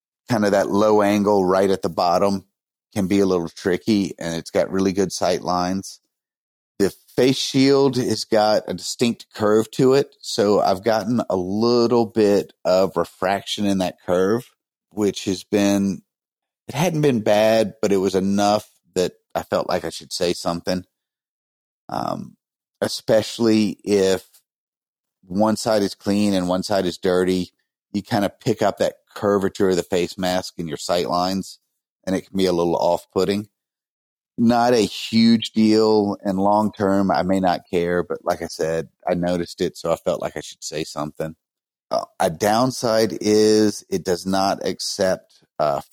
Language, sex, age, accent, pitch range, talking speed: English, male, 30-49, American, 90-105 Hz, 170 wpm